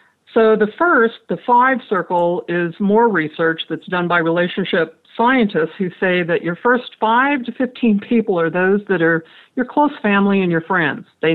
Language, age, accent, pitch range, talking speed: English, 50-69, American, 170-220 Hz, 180 wpm